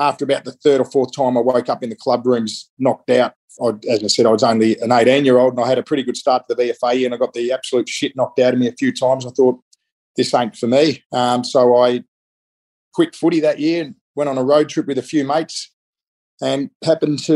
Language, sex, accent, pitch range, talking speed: English, male, Australian, 125-145 Hz, 255 wpm